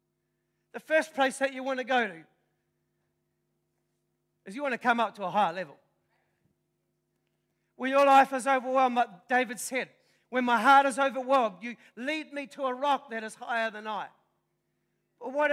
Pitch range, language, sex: 230-275 Hz, English, male